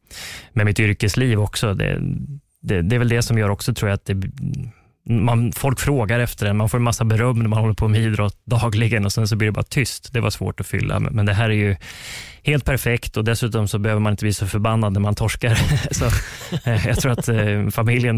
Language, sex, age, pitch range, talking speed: Swedish, male, 20-39, 95-115 Hz, 230 wpm